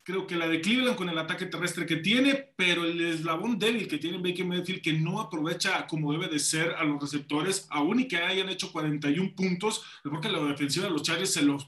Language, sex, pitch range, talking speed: Spanish, male, 160-200 Hz, 225 wpm